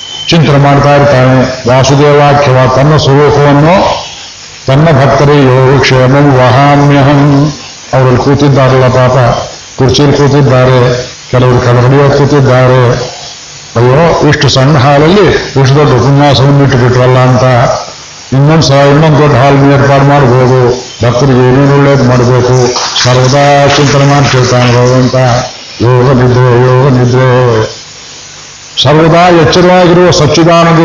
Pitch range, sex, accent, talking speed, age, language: 130-155 Hz, male, native, 100 wpm, 50-69, Kannada